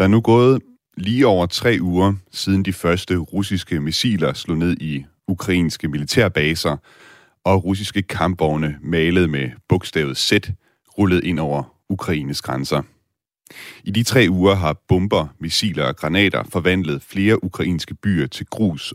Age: 30-49